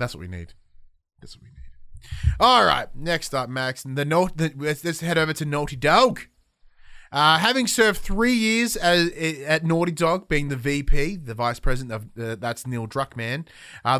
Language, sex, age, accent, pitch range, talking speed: English, male, 20-39, Australian, 125-175 Hz, 180 wpm